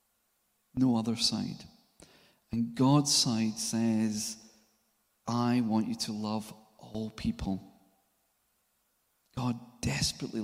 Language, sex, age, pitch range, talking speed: English, male, 40-59, 120-145 Hz, 90 wpm